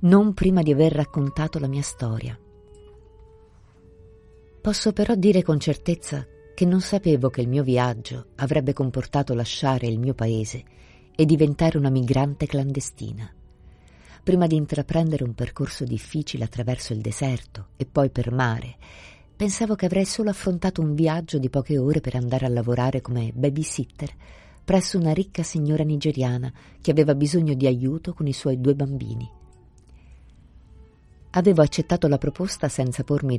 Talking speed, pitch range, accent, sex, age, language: 145 wpm, 120-160 Hz, native, female, 50-69, Italian